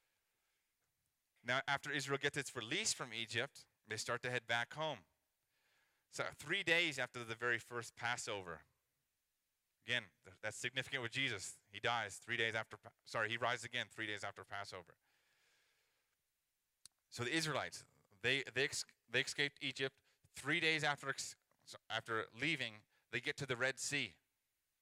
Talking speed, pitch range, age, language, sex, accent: 145 wpm, 105-135 Hz, 30-49, English, male, American